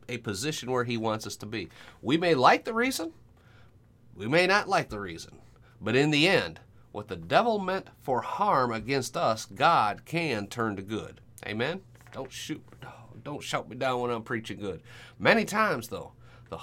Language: English